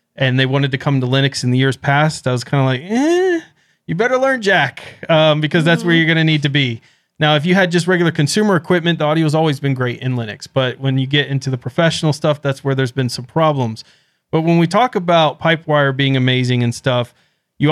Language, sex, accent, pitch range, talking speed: English, male, American, 135-165 Hz, 245 wpm